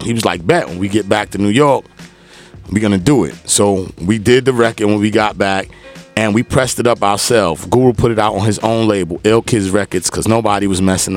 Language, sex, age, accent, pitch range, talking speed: English, male, 30-49, American, 95-120 Hz, 240 wpm